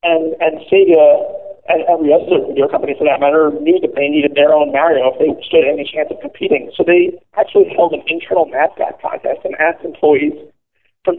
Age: 50-69